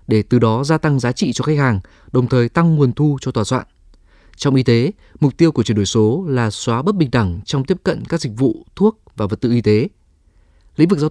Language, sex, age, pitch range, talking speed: Vietnamese, male, 20-39, 110-155 Hz, 255 wpm